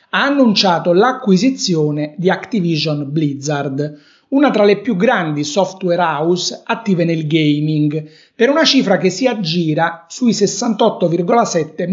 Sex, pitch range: male, 170-225 Hz